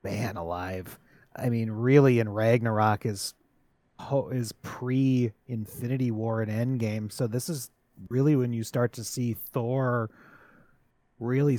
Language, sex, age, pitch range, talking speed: English, male, 30-49, 110-130 Hz, 130 wpm